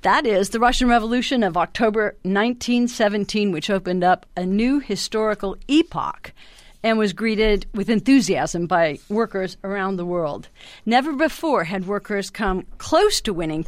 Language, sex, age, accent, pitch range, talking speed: English, female, 50-69, American, 185-225 Hz, 145 wpm